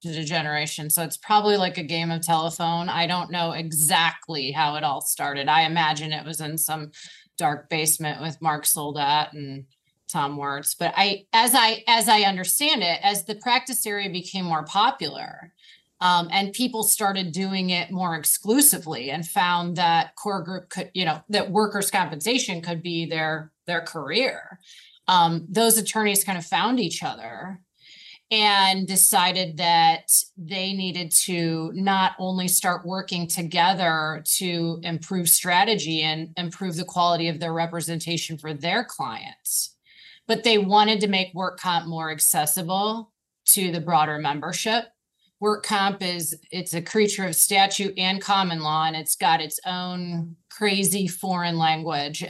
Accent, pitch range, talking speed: American, 160-195 Hz, 155 wpm